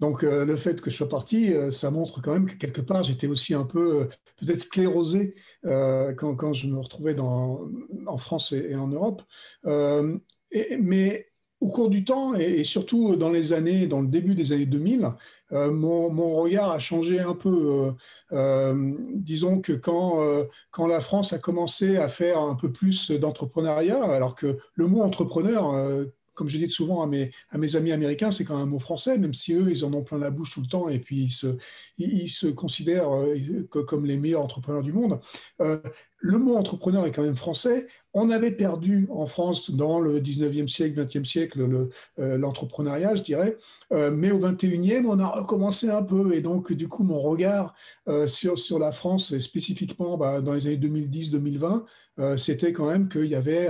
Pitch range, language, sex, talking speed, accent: 145-190 Hz, French, male, 205 wpm, French